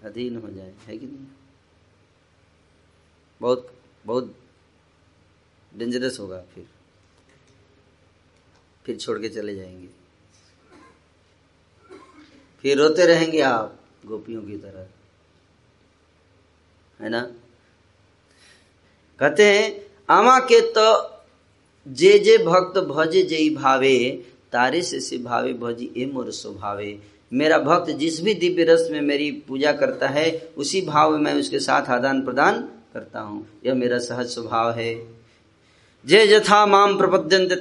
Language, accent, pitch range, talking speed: Hindi, native, 100-160 Hz, 110 wpm